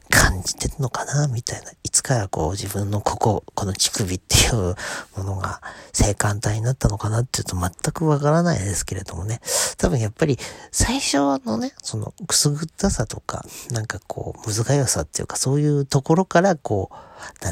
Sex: male